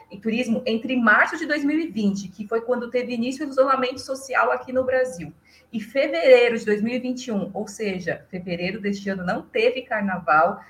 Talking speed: 165 wpm